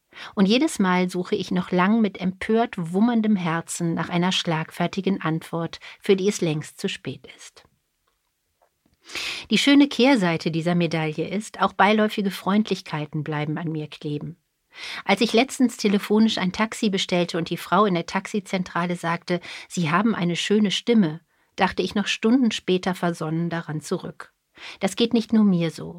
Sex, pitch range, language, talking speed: female, 165-210 Hz, German, 155 wpm